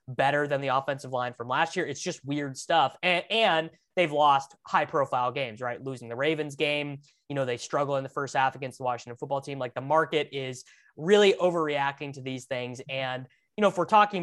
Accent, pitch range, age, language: American, 130-170 Hz, 20-39, English